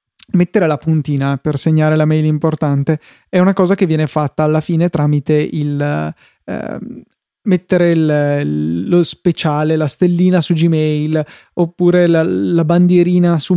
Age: 20-39